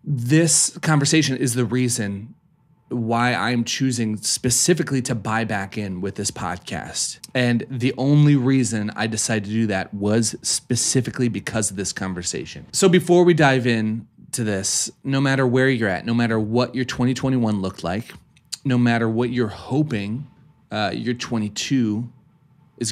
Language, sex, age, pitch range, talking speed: English, male, 30-49, 110-135 Hz, 155 wpm